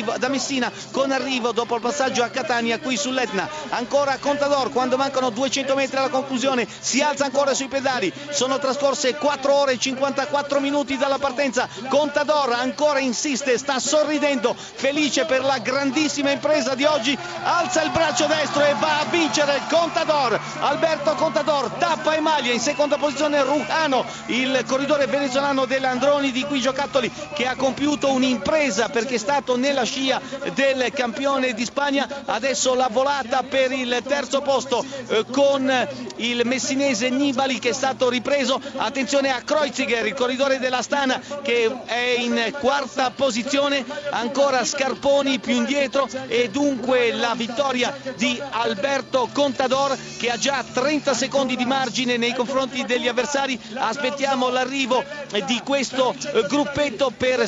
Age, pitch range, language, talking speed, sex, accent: 40-59, 255-285 Hz, Italian, 145 wpm, male, native